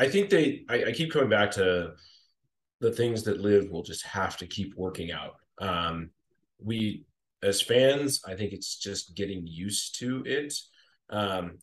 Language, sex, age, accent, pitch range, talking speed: English, male, 30-49, American, 90-110 Hz, 170 wpm